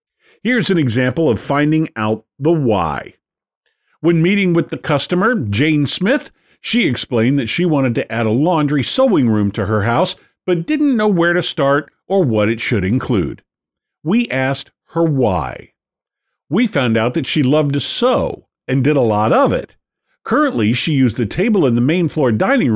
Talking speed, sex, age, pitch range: 180 wpm, male, 50-69, 115-160 Hz